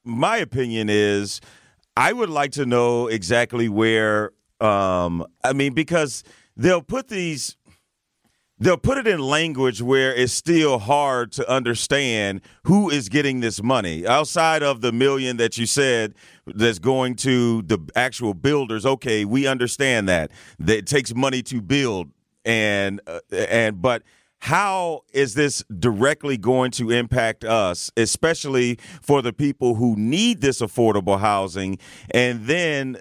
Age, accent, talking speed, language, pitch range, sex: 40-59, American, 140 wpm, English, 115-150 Hz, male